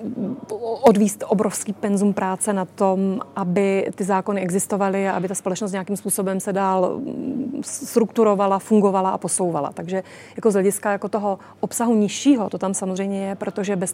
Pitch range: 195-225 Hz